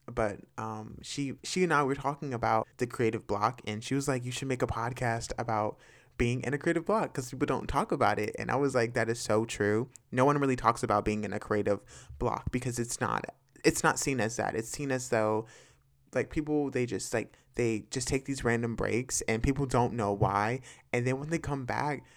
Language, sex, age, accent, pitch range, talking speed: English, male, 20-39, American, 115-140 Hz, 230 wpm